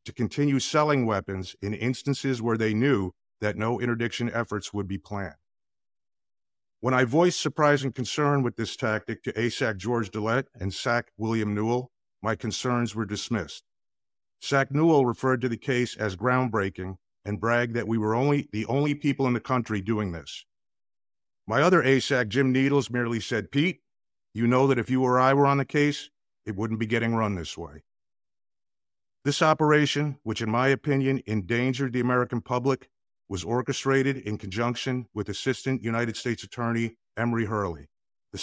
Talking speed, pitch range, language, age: 165 wpm, 105-130 Hz, English, 50-69